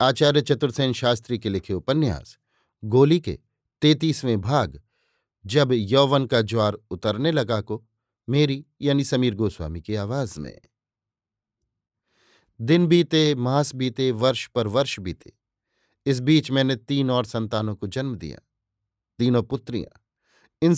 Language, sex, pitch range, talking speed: Hindi, male, 110-140 Hz, 125 wpm